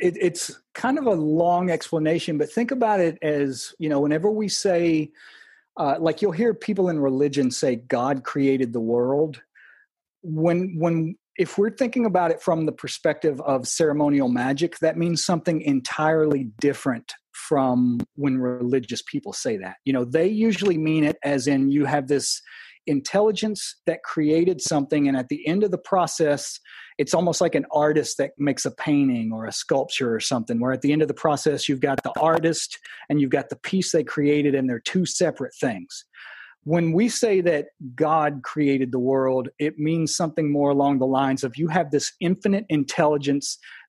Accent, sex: American, male